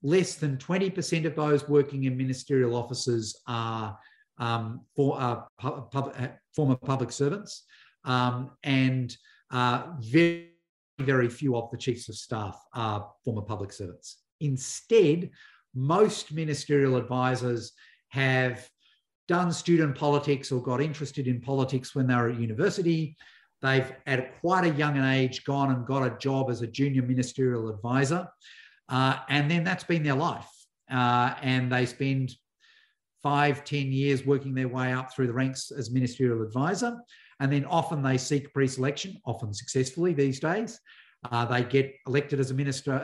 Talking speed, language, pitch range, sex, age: 145 wpm, English, 125-145 Hz, male, 50-69